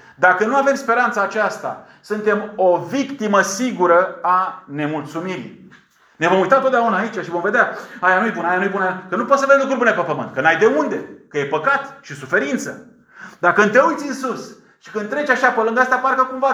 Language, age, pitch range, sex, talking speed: Romanian, 30-49, 145-230 Hz, male, 210 wpm